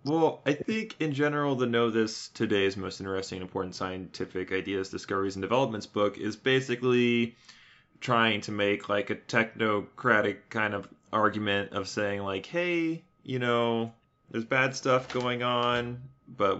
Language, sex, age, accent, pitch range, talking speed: English, male, 20-39, American, 100-120 Hz, 150 wpm